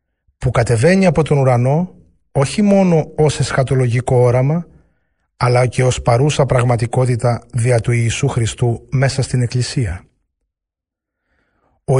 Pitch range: 115-175 Hz